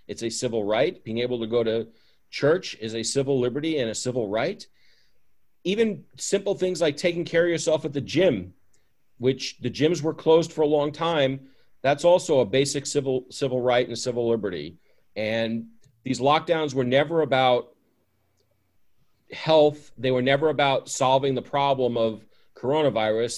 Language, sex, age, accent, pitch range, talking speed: English, male, 40-59, American, 115-145 Hz, 165 wpm